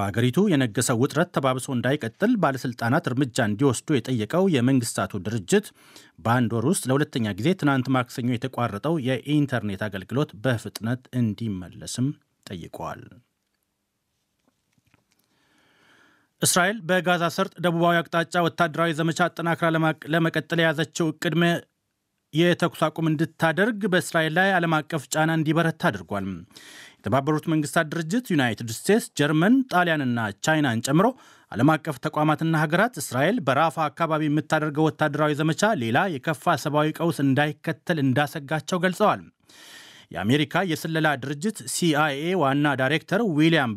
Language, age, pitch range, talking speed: Amharic, 30-49, 135-170 Hz, 105 wpm